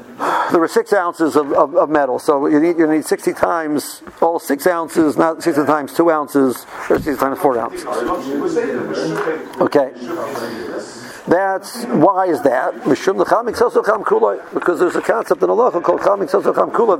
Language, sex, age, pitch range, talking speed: English, male, 50-69, 150-200 Hz, 140 wpm